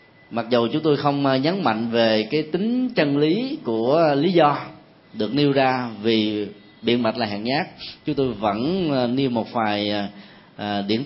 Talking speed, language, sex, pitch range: 170 wpm, Vietnamese, male, 115-165 Hz